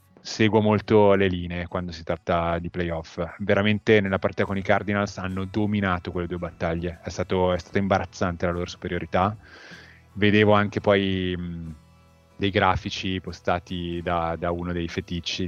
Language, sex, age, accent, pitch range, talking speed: Italian, male, 30-49, native, 85-100 Hz, 145 wpm